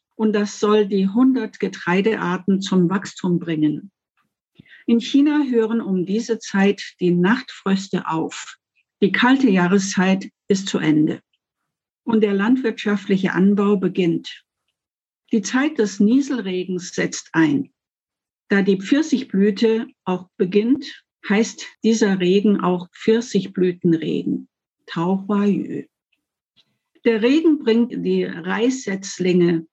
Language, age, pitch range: German, 60-79, 185-225 Hz